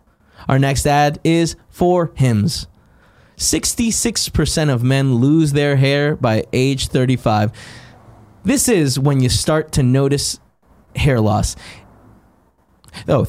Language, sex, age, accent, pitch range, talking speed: English, male, 20-39, American, 125-170 Hz, 115 wpm